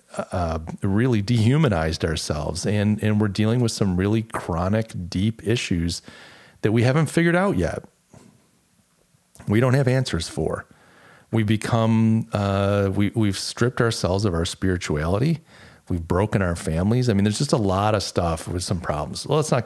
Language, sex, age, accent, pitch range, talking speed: English, male, 40-59, American, 95-125 Hz, 160 wpm